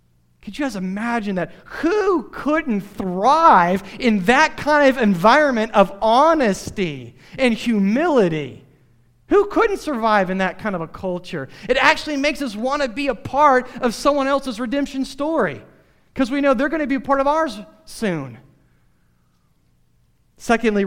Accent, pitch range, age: American, 155-240 Hz, 40-59